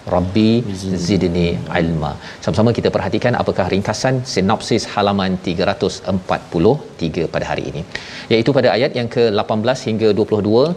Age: 40-59